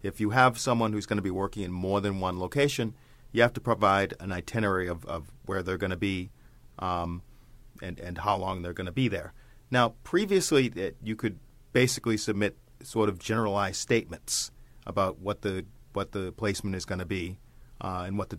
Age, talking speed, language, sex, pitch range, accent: 40-59, 200 wpm, English, male, 100-120 Hz, American